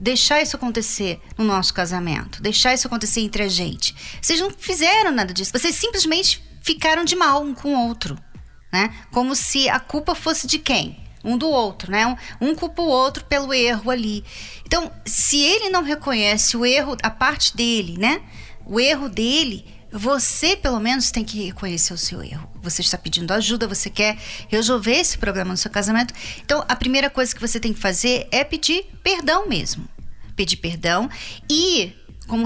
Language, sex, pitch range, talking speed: Portuguese, female, 205-295 Hz, 180 wpm